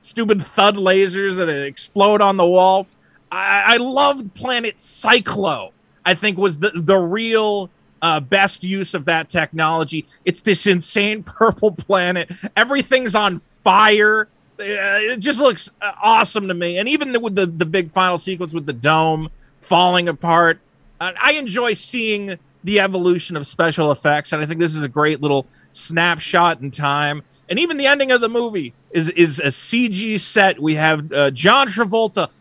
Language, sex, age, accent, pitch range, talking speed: English, male, 30-49, American, 170-225 Hz, 165 wpm